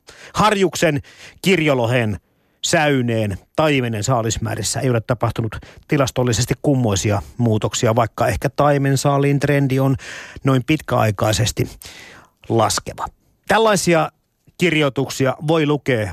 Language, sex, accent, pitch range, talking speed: Finnish, male, native, 115-155 Hz, 90 wpm